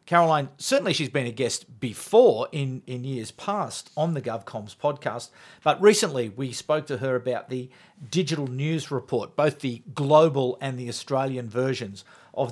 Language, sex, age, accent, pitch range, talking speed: English, male, 50-69, Australian, 125-170 Hz, 165 wpm